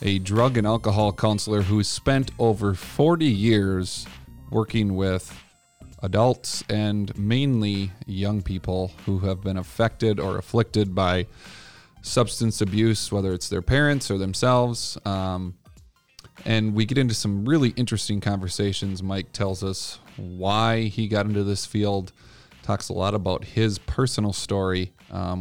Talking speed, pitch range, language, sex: 135 wpm, 95-115 Hz, English, male